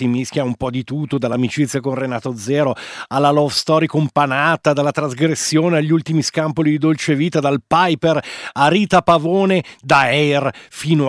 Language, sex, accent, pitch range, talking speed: Italian, male, native, 150-180 Hz, 160 wpm